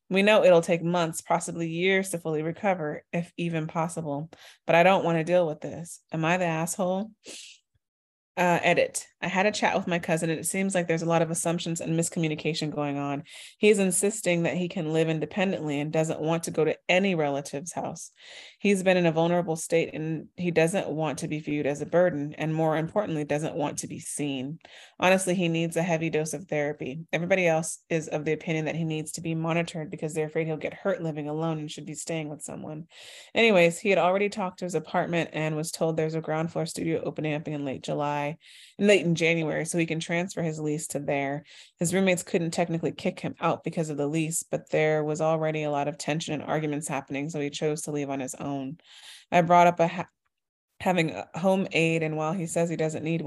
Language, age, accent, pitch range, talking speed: English, 20-39, American, 155-175 Hz, 225 wpm